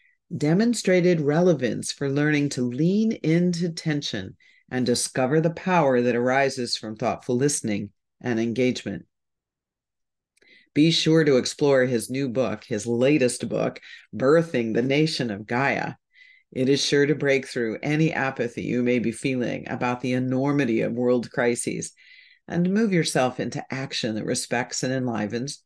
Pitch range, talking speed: 120-160 Hz, 145 wpm